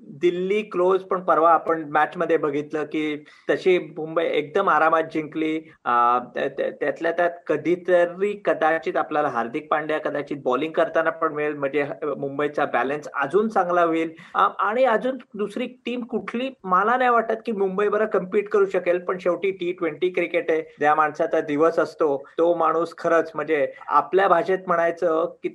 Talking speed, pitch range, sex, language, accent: 150 wpm, 155-190 Hz, male, Marathi, native